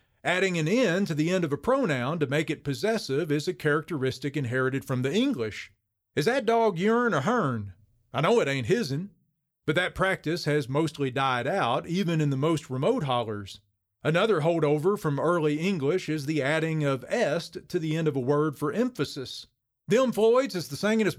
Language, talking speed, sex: English, 190 wpm, male